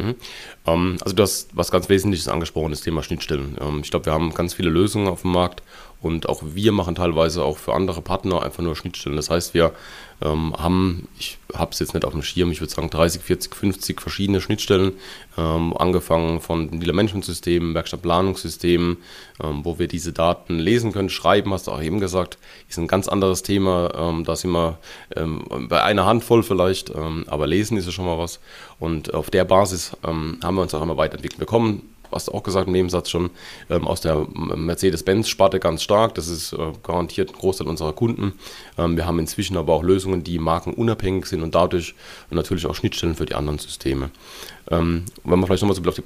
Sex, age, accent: male, 30-49, German